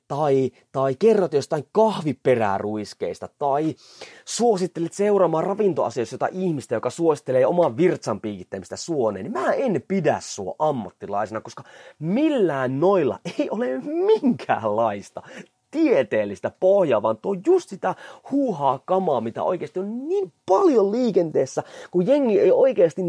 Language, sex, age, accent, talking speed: Finnish, male, 30-49, native, 120 wpm